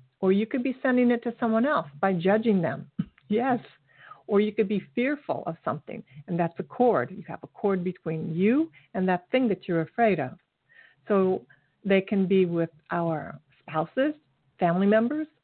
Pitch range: 165-210 Hz